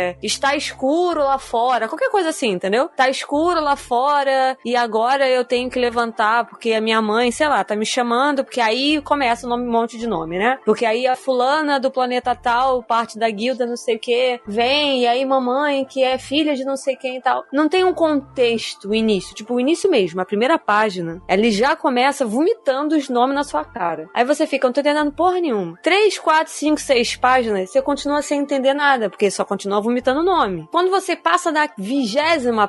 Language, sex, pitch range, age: Portuguese, female, 220-285 Hz, 20-39